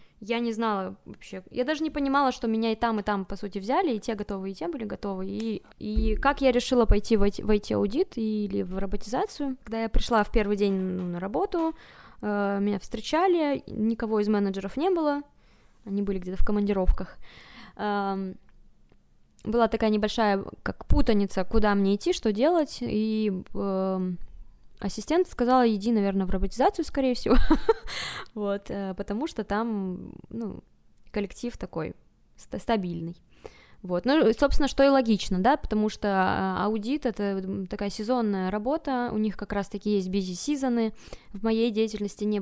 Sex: female